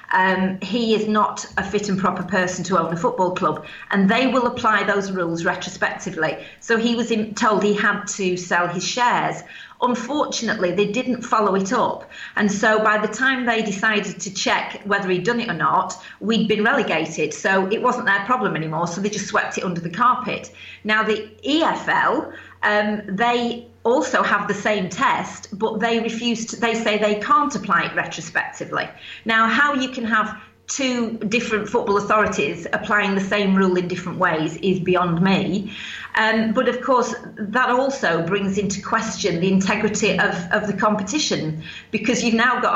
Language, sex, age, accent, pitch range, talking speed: English, female, 40-59, British, 190-230 Hz, 180 wpm